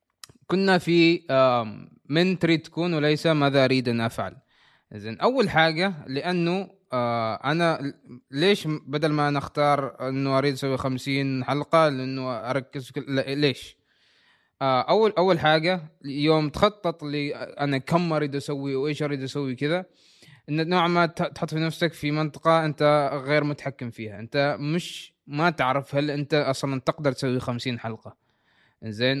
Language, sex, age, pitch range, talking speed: Arabic, male, 20-39, 130-160 Hz, 135 wpm